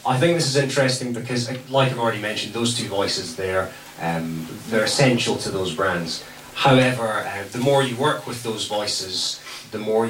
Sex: male